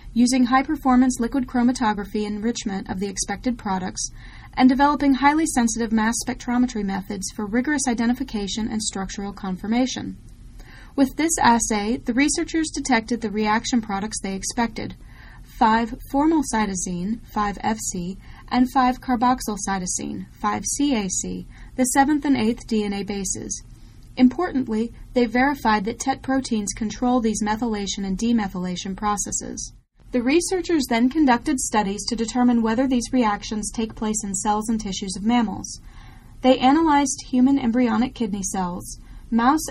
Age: 30-49